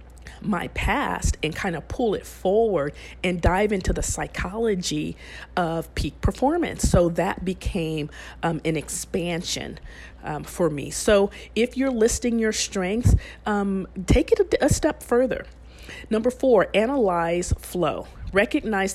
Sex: female